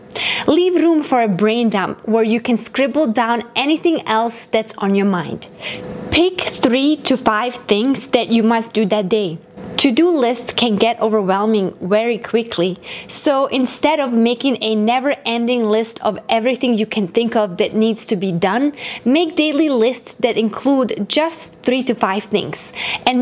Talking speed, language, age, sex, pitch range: 160 wpm, English, 20-39, female, 220-280 Hz